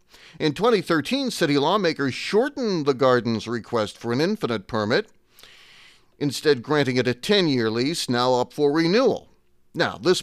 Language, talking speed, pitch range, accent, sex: English, 140 wpm, 130-160 Hz, American, male